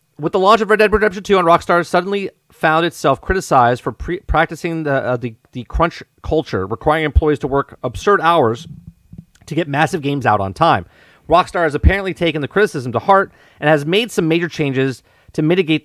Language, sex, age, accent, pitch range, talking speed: English, male, 40-59, American, 120-165 Hz, 195 wpm